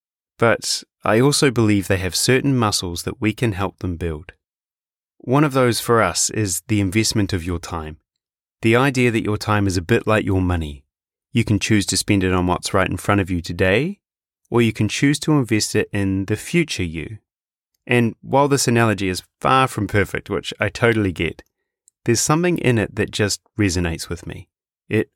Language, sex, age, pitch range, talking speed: English, male, 30-49, 95-120 Hz, 200 wpm